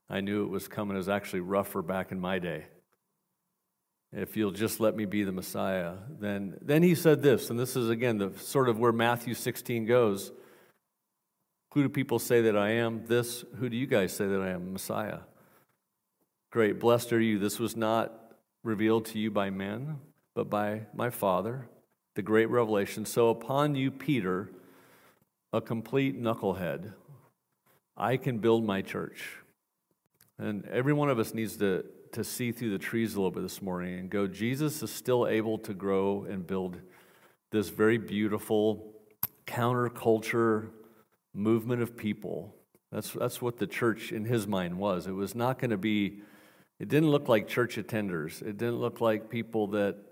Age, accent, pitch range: 50-69, American, 100-120 Hz